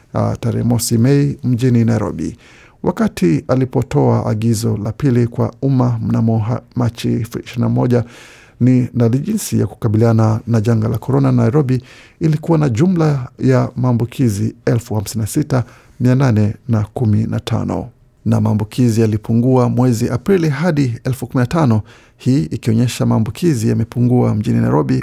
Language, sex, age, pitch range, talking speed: Swahili, male, 50-69, 115-135 Hz, 105 wpm